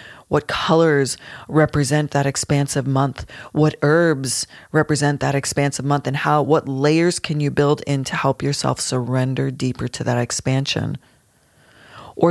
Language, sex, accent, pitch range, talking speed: English, female, American, 135-160 Hz, 140 wpm